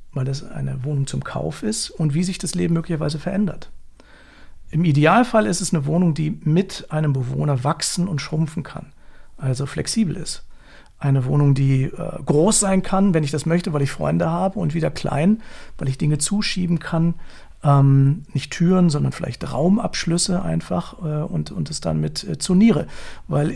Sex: male